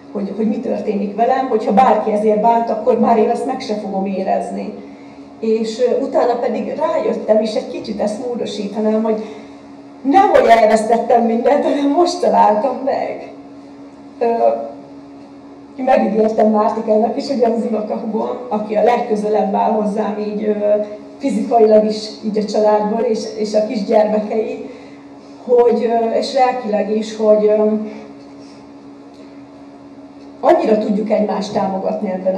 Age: 40-59